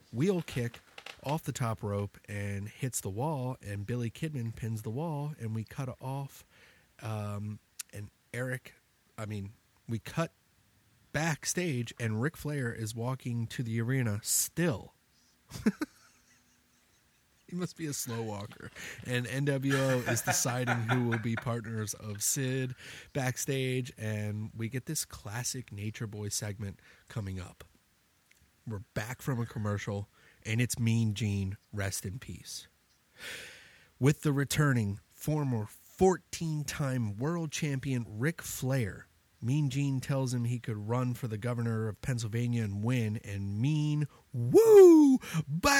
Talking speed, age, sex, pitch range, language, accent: 135 wpm, 30-49, male, 110-150 Hz, English, American